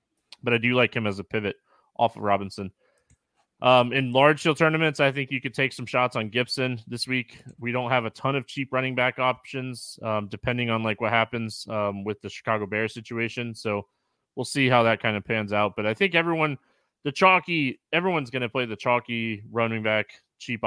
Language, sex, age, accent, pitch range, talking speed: English, male, 20-39, American, 110-145 Hz, 210 wpm